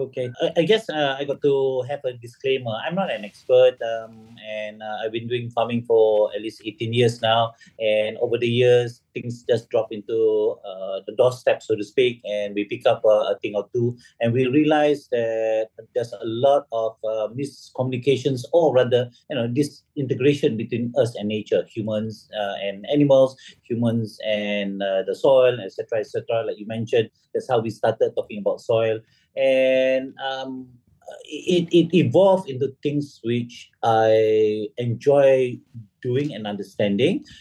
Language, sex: English, male